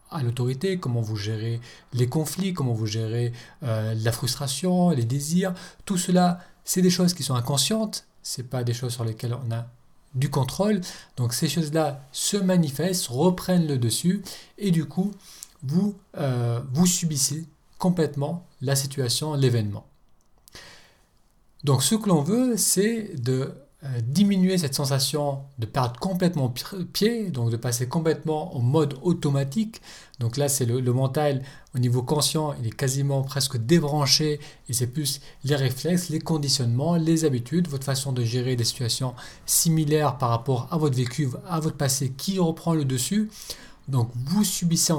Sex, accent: male, French